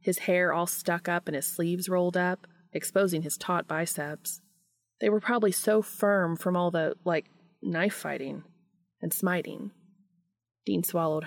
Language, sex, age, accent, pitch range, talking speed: English, female, 30-49, American, 170-200 Hz, 155 wpm